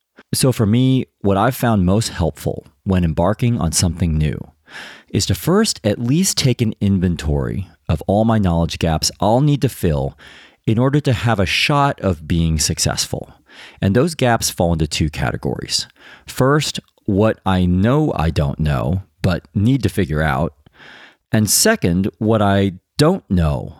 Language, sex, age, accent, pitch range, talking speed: English, male, 40-59, American, 85-115 Hz, 165 wpm